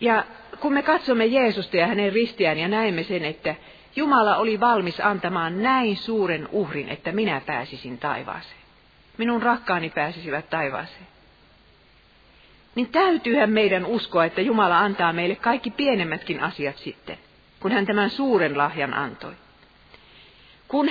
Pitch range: 155-230 Hz